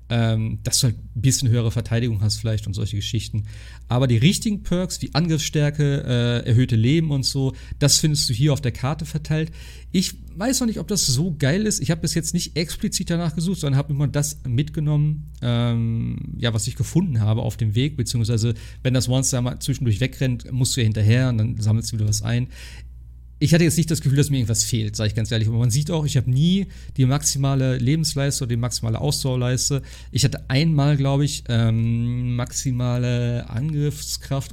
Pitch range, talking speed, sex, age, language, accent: 115-145 Hz, 205 wpm, male, 40-59, German, German